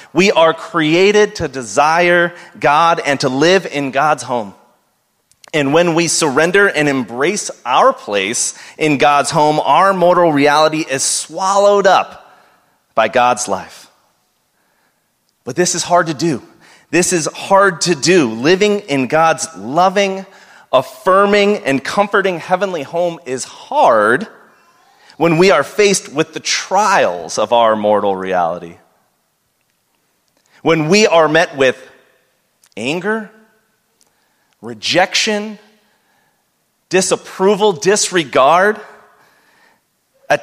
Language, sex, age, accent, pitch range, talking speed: English, male, 30-49, American, 140-195 Hz, 110 wpm